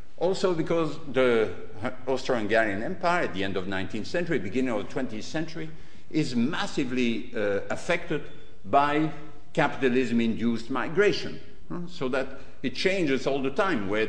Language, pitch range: English, 105-145 Hz